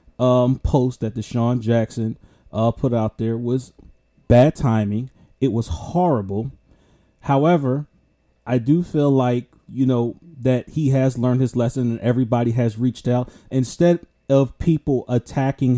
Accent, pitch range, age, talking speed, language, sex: American, 115-135 Hz, 30-49, 145 wpm, English, male